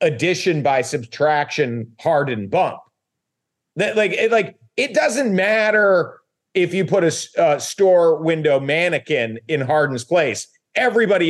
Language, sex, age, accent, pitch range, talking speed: English, male, 40-59, American, 155-205 Hz, 125 wpm